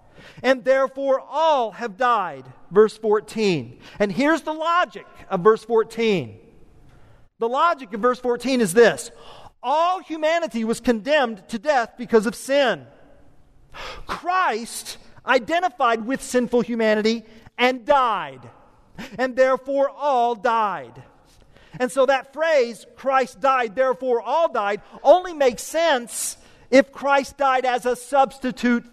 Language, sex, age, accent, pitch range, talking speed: English, male, 40-59, American, 220-280 Hz, 120 wpm